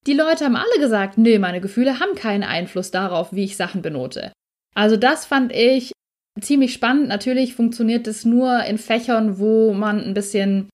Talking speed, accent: 180 wpm, German